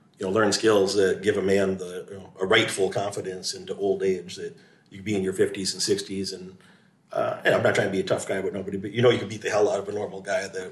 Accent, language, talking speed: American, English, 290 wpm